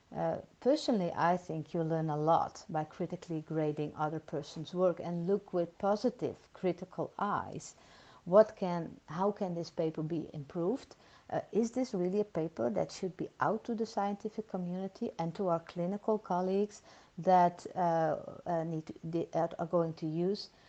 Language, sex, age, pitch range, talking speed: English, female, 50-69, 165-195 Hz, 165 wpm